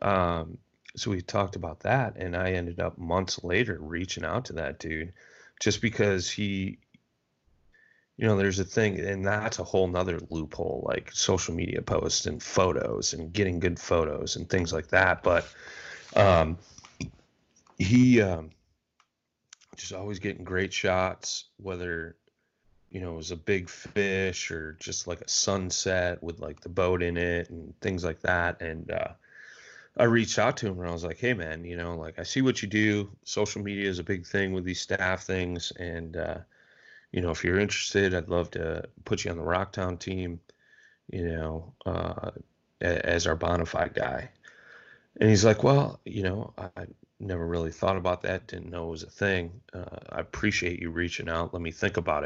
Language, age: English, 30-49